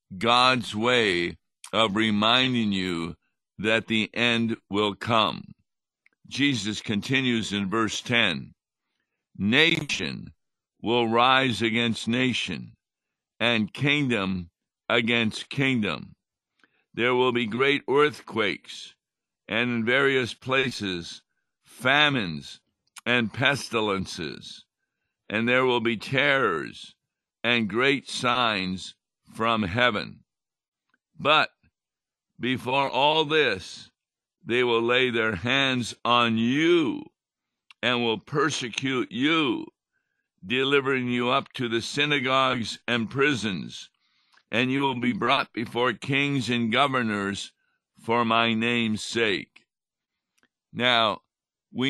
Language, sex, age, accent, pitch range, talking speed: English, male, 60-79, American, 110-130 Hz, 95 wpm